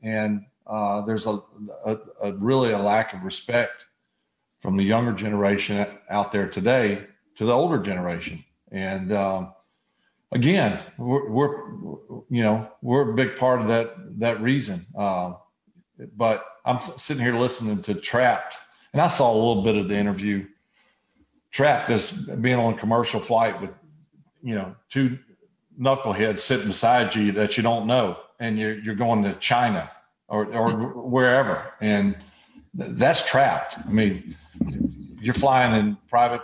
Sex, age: male, 40-59